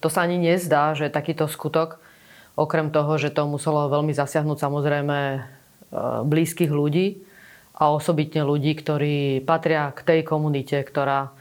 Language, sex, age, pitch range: Slovak, female, 20-39, 150-170 Hz